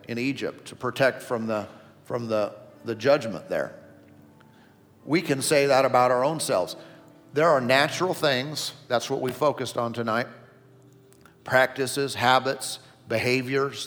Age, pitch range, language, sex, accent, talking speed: 50-69, 130-160 Hz, English, male, American, 140 wpm